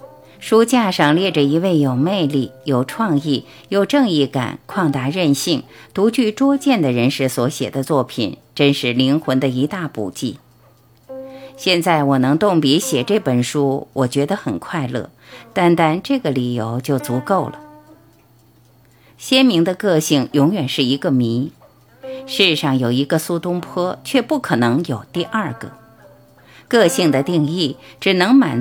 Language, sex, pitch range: Chinese, female, 130-195 Hz